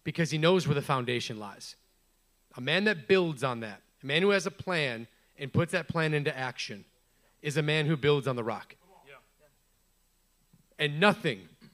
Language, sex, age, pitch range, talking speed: English, male, 30-49, 135-180 Hz, 180 wpm